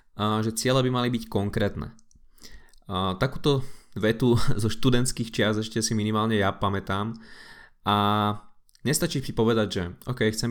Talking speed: 130 wpm